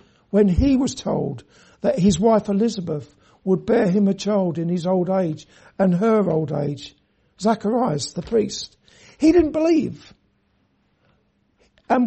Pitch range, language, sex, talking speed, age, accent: 165-240 Hz, English, male, 140 wpm, 60-79, British